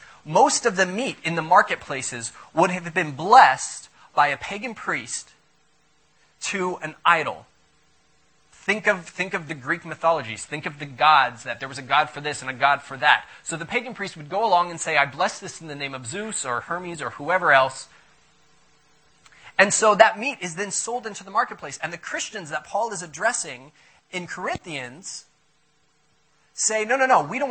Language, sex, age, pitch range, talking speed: English, male, 30-49, 150-200 Hz, 190 wpm